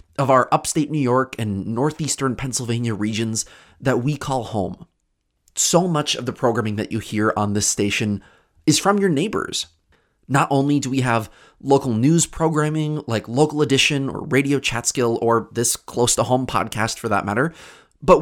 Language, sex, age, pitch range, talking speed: English, male, 30-49, 110-155 Hz, 165 wpm